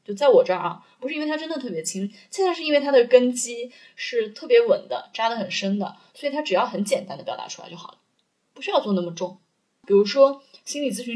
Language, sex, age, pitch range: Chinese, female, 20-39, 200-280 Hz